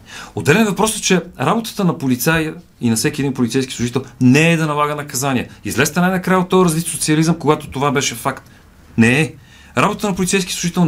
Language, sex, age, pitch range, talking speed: Bulgarian, male, 40-59, 120-165 Hz, 190 wpm